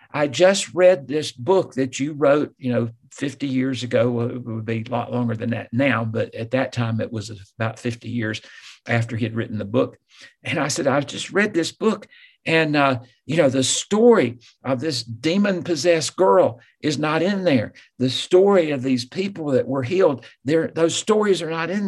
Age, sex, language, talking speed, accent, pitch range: 50-69, male, English, 205 wpm, American, 115-145 Hz